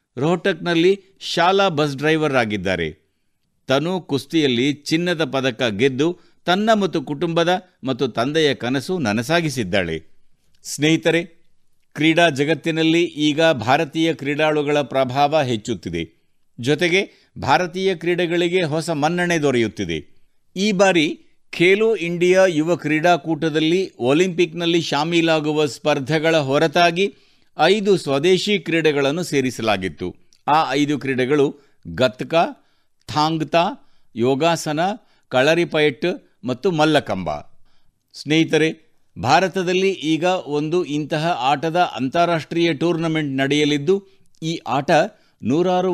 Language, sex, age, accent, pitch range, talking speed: Kannada, male, 60-79, native, 135-170 Hz, 90 wpm